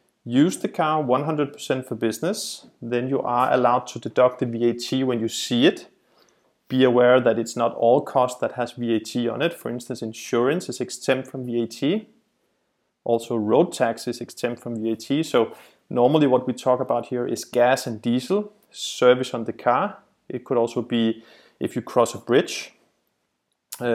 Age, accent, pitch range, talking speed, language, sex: 30-49, Danish, 120-145 Hz, 175 wpm, English, male